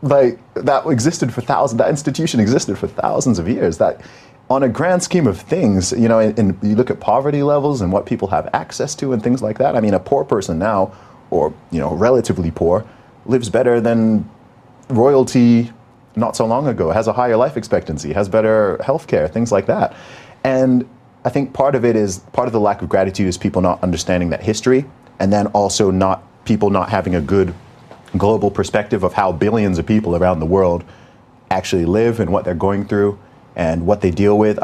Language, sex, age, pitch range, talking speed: English, male, 30-49, 95-125 Hz, 205 wpm